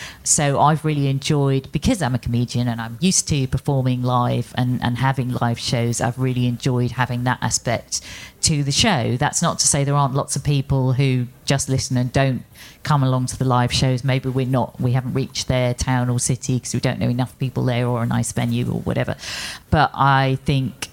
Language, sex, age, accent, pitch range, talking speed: English, female, 40-59, British, 120-140 Hz, 210 wpm